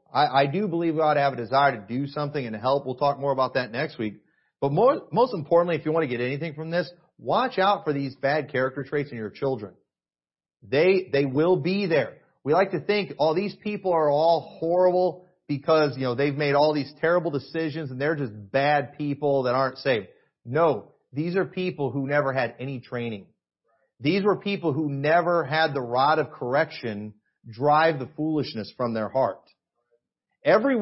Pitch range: 125-175 Hz